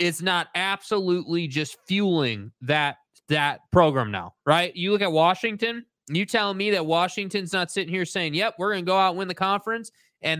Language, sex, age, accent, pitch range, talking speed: English, male, 20-39, American, 165-205 Hz, 200 wpm